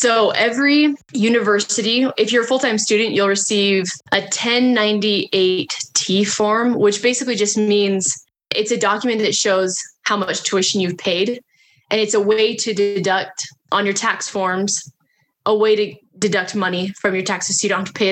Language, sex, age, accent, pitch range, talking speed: English, female, 10-29, American, 190-220 Hz, 170 wpm